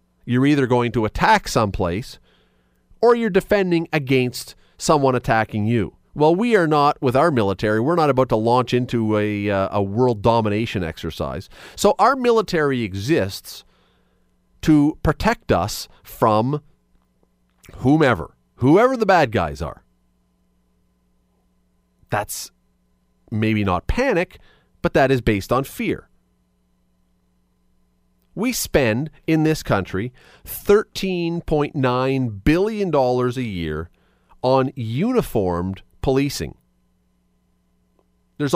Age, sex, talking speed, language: 40-59, male, 105 wpm, English